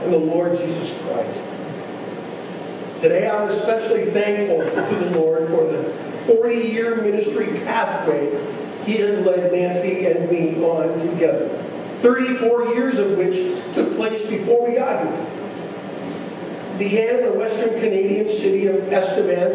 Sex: male